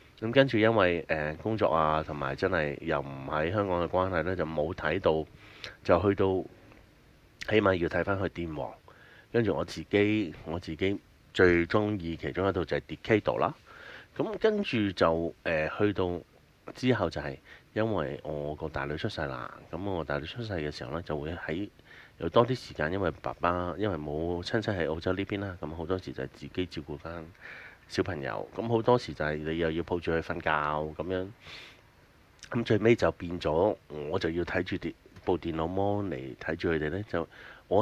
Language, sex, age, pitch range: Chinese, male, 30-49, 80-105 Hz